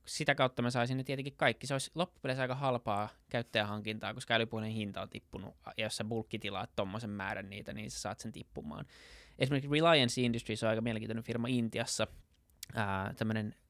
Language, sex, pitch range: Finnish, male, 105-125 Hz